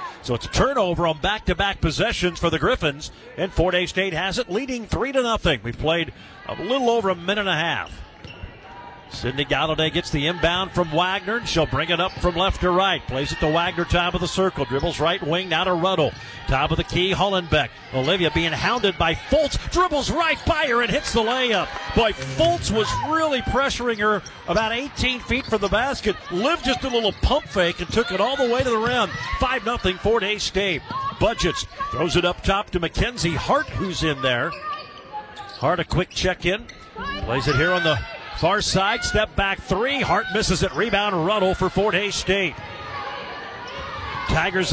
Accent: American